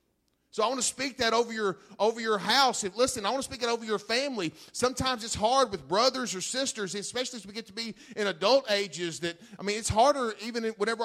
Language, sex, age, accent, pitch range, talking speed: English, male, 40-59, American, 200-255 Hz, 240 wpm